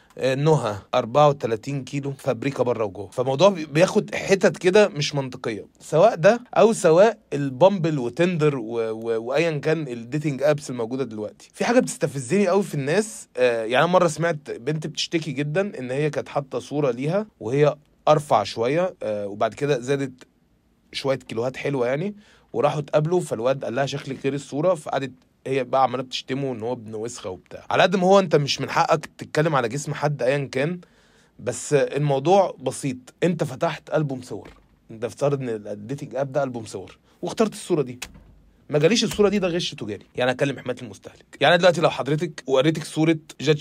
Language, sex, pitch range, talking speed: Arabic, male, 135-185 Hz, 160 wpm